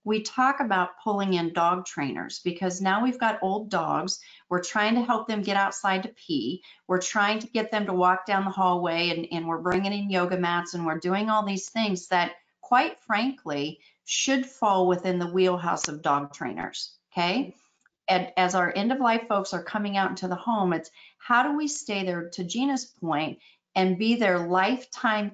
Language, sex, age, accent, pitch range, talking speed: English, female, 40-59, American, 180-225 Hz, 190 wpm